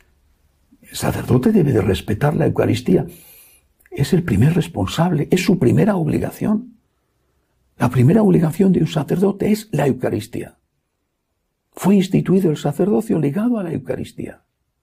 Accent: Spanish